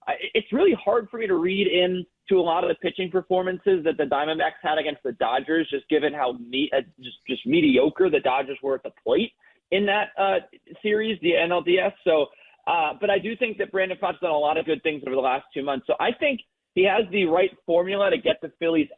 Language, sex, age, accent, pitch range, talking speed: English, male, 30-49, American, 150-190 Hz, 235 wpm